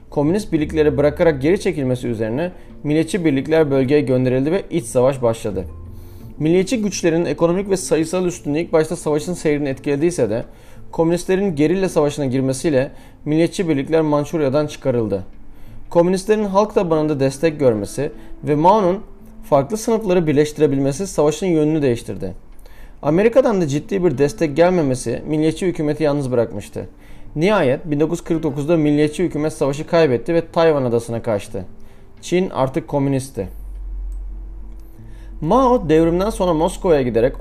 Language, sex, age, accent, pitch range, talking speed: Turkish, male, 40-59, native, 120-170 Hz, 120 wpm